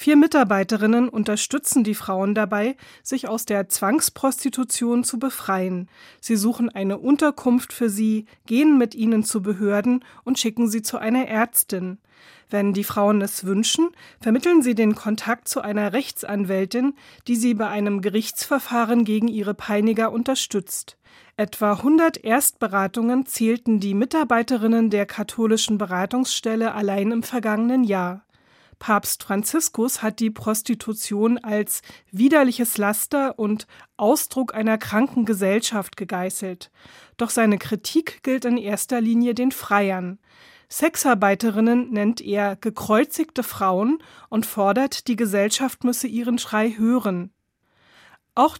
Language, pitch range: German, 210-245 Hz